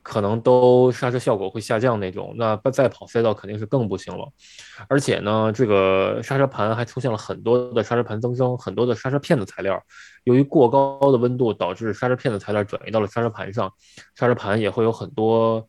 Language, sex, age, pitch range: Chinese, male, 20-39, 100-125 Hz